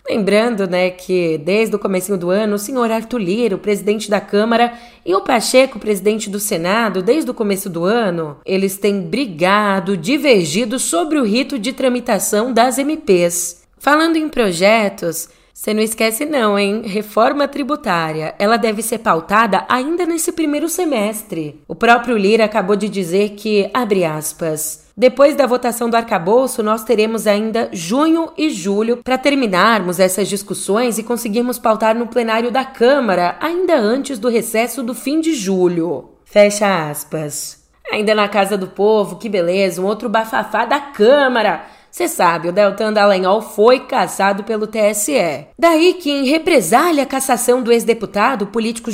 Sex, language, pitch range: female, Portuguese, 195-250 Hz